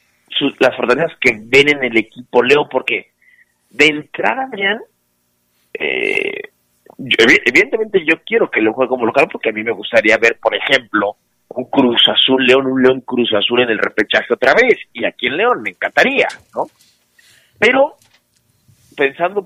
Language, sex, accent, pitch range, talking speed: Spanish, male, Mexican, 110-145 Hz, 160 wpm